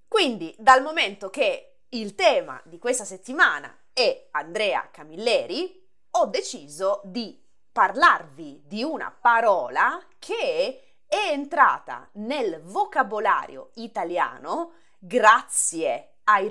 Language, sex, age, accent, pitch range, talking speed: Italian, female, 20-39, native, 190-310 Hz, 100 wpm